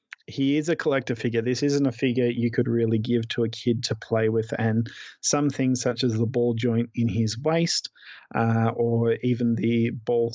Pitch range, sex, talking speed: 115-135 Hz, male, 205 wpm